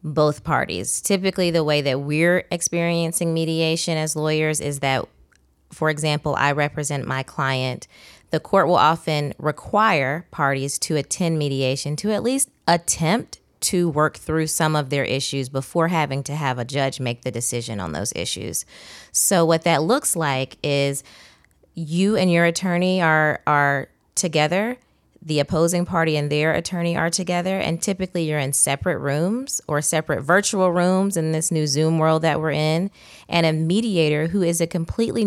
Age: 20-39